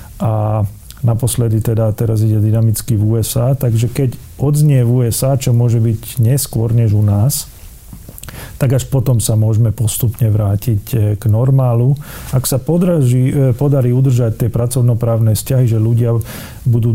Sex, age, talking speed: male, 40-59, 140 wpm